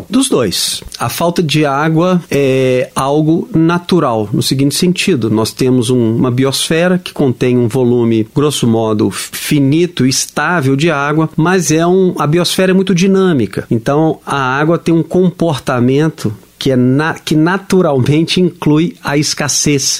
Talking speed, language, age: 130 wpm, Portuguese, 40-59